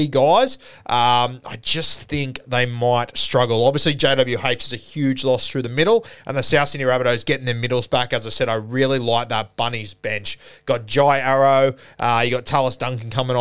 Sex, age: male, 20-39